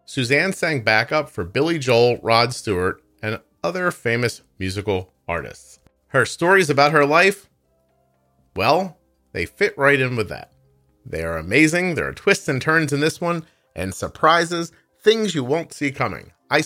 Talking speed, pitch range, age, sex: 160 wpm, 95-150 Hz, 40-59, male